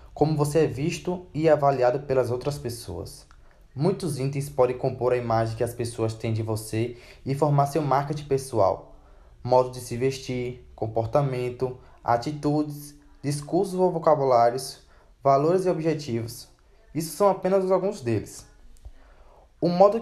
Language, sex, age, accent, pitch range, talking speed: Portuguese, male, 20-39, Brazilian, 120-160 Hz, 135 wpm